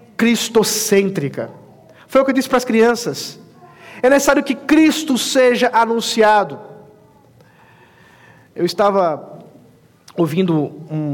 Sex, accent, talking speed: male, Brazilian, 100 wpm